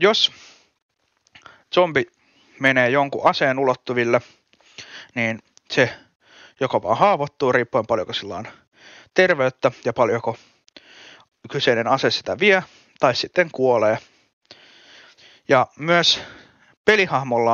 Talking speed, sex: 95 wpm, male